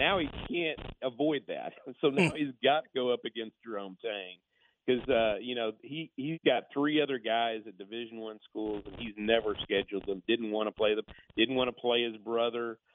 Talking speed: 200 wpm